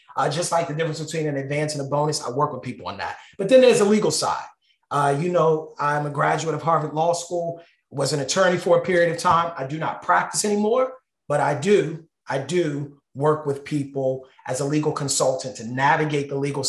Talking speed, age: 225 wpm, 30-49